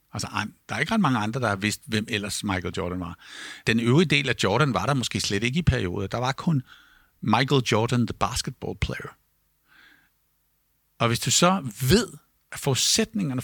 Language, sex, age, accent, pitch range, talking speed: Danish, male, 60-79, native, 120-160 Hz, 190 wpm